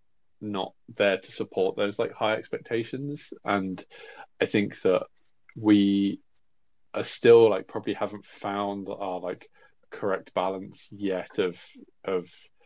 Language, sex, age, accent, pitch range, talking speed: English, male, 20-39, British, 90-105 Hz, 125 wpm